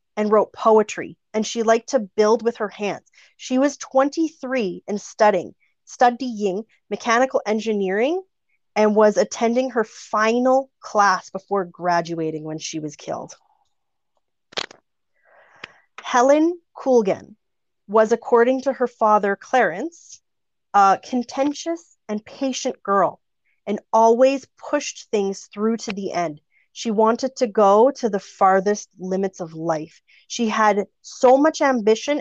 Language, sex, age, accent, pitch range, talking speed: English, female, 30-49, American, 195-245 Hz, 125 wpm